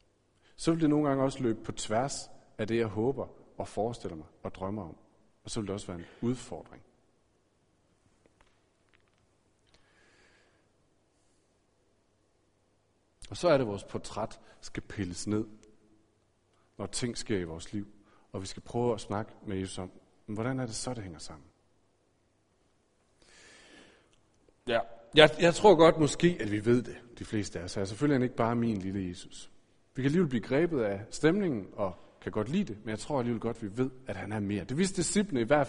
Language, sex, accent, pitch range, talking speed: Danish, male, native, 100-145 Hz, 185 wpm